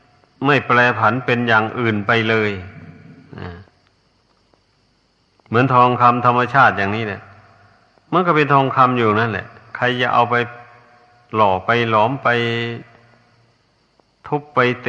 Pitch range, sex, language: 105-125 Hz, male, Thai